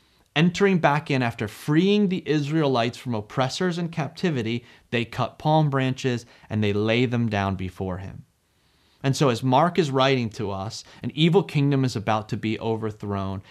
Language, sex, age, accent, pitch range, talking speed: English, male, 30-49, American, 115-165 Hz, 170 wpm